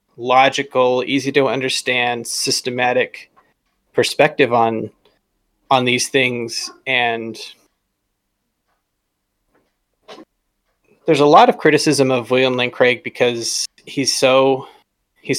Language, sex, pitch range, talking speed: English, male, 120-135 Hz, 95 wpm